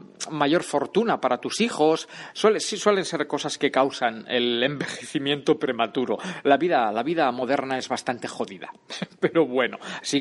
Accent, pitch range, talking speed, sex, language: Spanish, 130-195 Hz, 145 wpm, male, Spanish